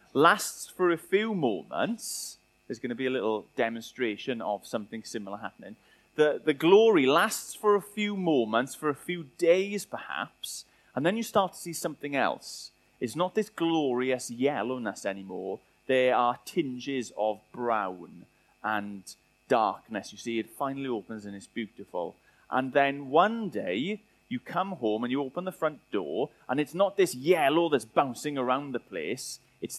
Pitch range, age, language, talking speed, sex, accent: 115-170 Hz, 30-49, English, 165 wpm, male, British